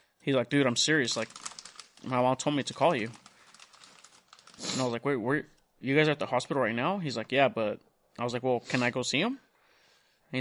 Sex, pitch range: male, 115-140 Hz